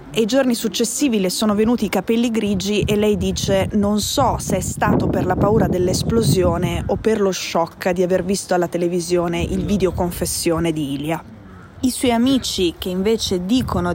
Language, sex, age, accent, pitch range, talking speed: Italian, female, 20-39, native, 180-205 Hz, 180 wpm